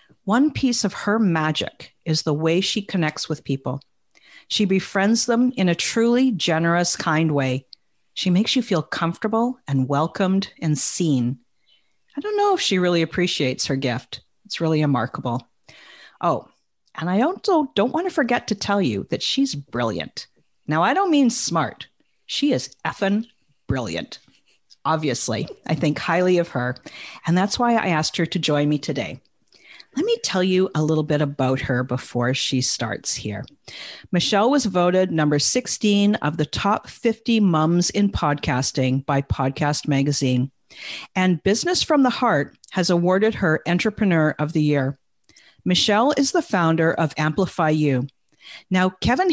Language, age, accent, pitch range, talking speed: English, 50-69, American, 145-215 Hz, 160 wpm